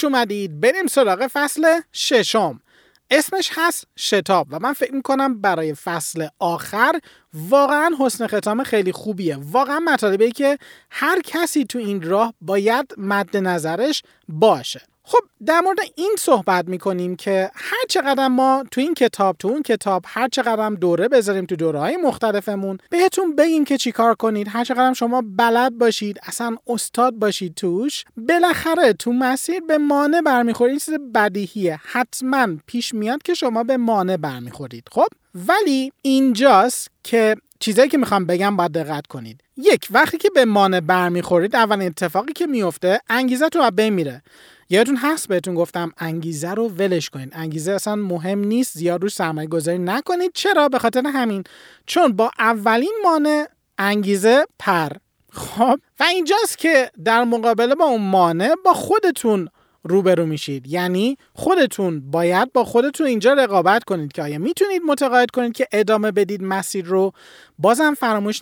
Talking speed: 150 wpm